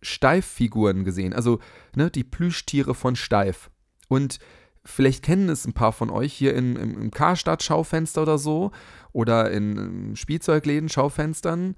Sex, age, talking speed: male, 30-49, 125 wpm